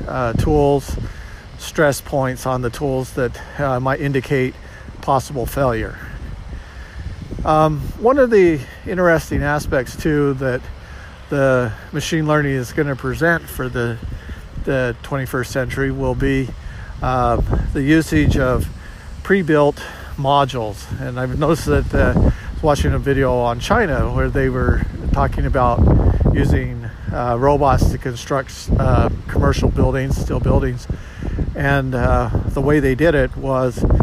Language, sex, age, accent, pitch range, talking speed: English, male, 50-69, American, 110-140 Hz, 130 wpm